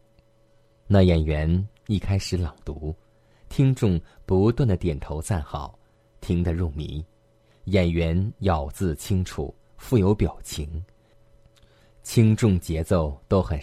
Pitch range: 80-110 Hz